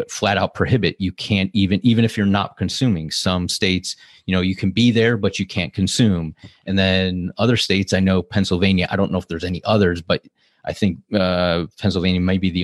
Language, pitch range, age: English, 90-105 Hz, 30-49